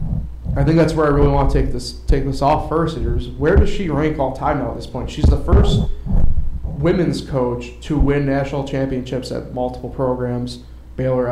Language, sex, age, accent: English, male, 30-49, American